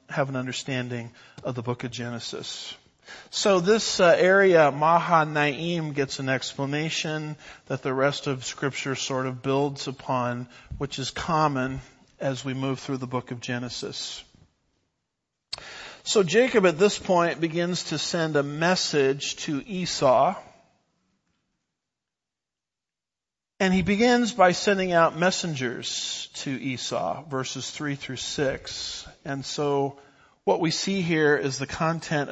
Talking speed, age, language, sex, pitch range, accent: 130 wpm, 50-69, English, male, 135-165 Hz, American